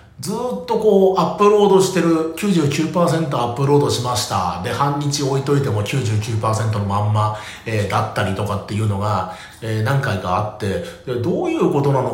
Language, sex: Japanese, male